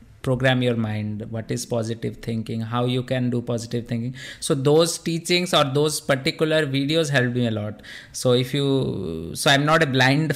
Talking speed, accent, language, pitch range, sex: 185 wpm, Indian, English, 120-150 Hz, male